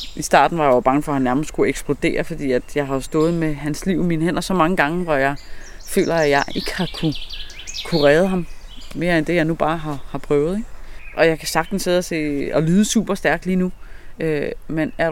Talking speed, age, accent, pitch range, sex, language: 250 wpm, 30-49, native, 145-175 Hz, female, Danish